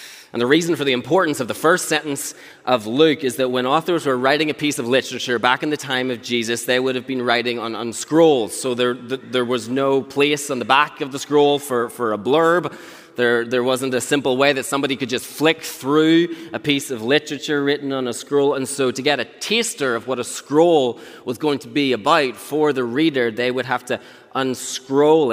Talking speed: 225 wpm